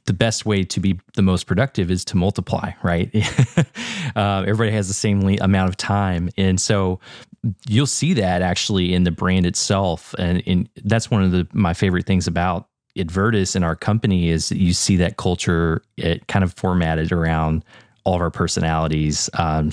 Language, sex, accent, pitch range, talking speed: English, male, American, 85-110 Hz, 180 wpm